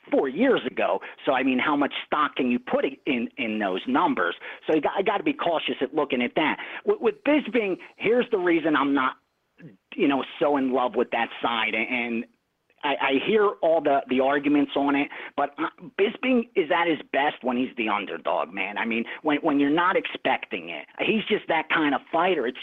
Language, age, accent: English, 40-59, American